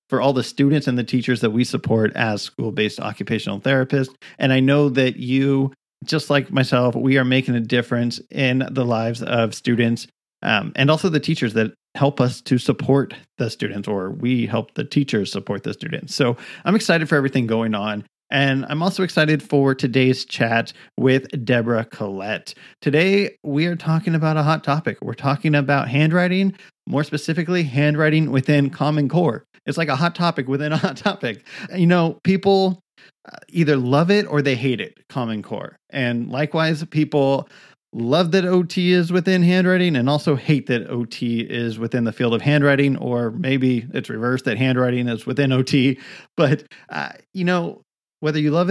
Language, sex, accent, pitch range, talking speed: English, male, American, 125-155 Hz, 175 wpm